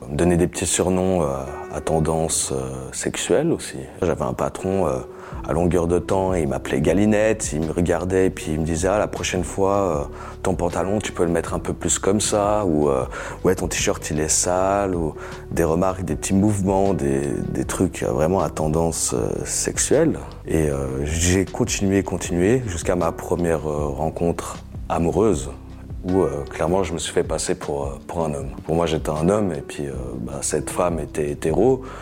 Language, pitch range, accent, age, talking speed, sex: French, 75-95 Hz, French, 30-49, 195 wpm, male